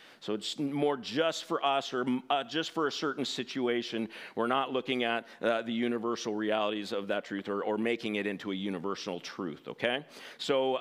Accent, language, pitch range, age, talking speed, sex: American, English, 150-210 Hz, 50-69, 190 wpm, male